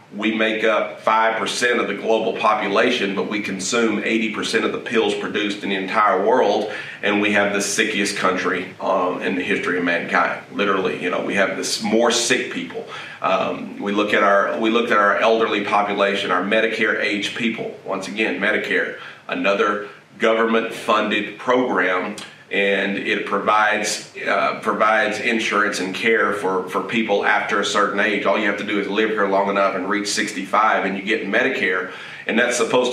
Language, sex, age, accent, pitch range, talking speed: English, male, 40-59, American, 100-110 Hz, 180 wpm